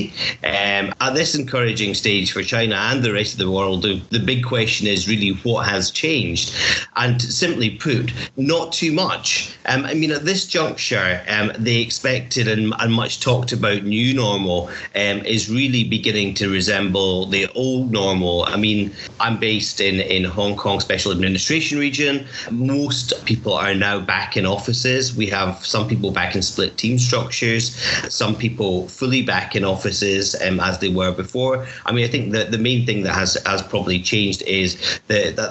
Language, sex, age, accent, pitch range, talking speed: English, male, 40-59, British, 95-120 Hz, 185 wpm